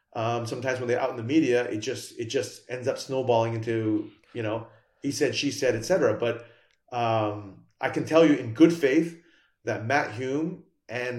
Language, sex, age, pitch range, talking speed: English, male, 30-49, 115-135 Hz, 200 wpm